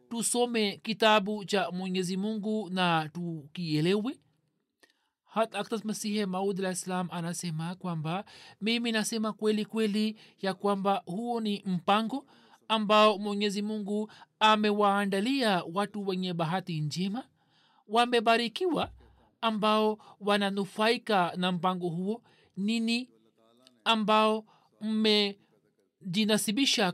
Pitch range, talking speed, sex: 185-225 Hz, 90 wpm, male